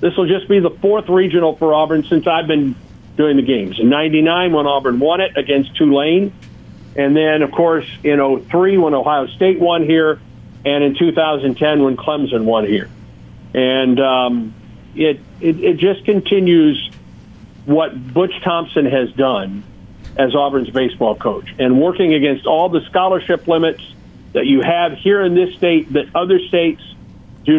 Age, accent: 50-69, American